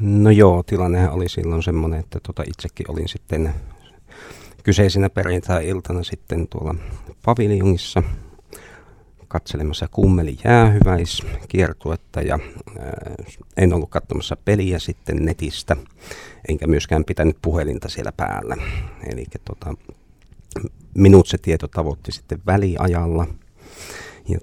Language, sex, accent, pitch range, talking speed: Finnish, male, native, 80-95 Hz, 105 wpm